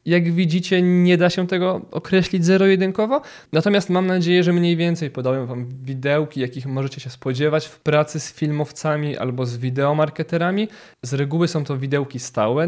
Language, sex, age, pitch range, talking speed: Polish, male, 20-39, 125-155 Hz, 160 wpm